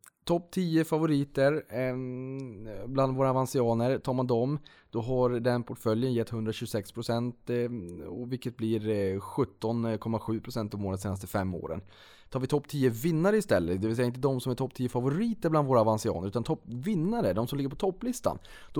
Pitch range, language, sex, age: 95-125 Hz, Swedish, male, 20-39